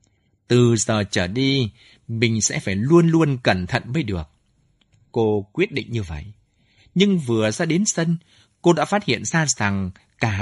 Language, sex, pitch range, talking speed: Vietnamese, male, 105-155 Hz, 175 wpm